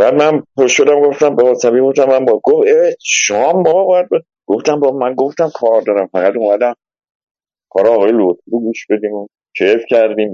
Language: Persian